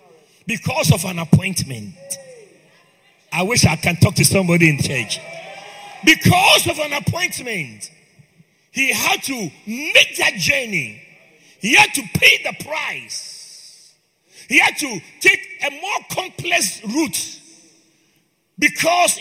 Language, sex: English, male